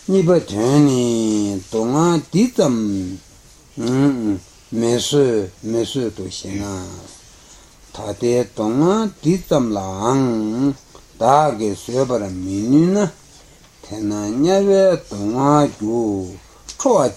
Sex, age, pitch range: male, 60-79, 100-155 Hz